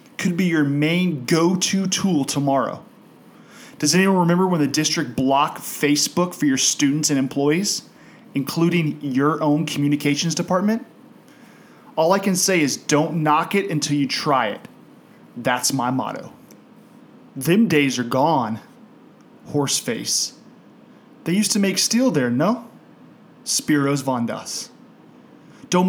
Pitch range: 145-210 Hz